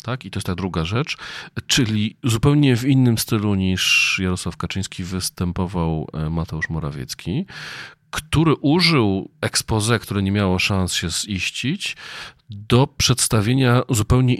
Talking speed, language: 125 wpm, Polish